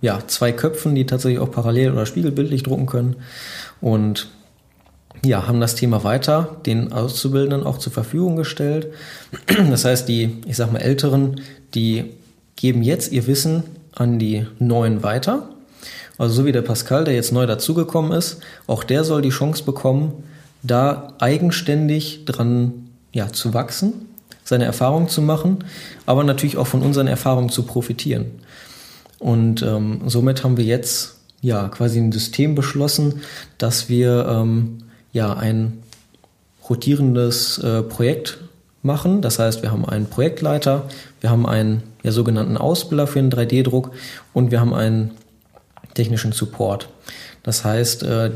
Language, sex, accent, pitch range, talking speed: German, male, German, 115-145 Hz, 145 wpm